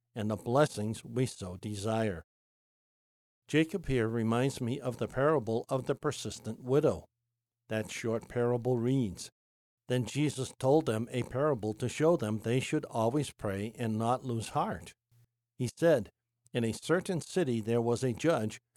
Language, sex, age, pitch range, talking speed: English, male, 60-79, 115-145 Hz, 155 wpm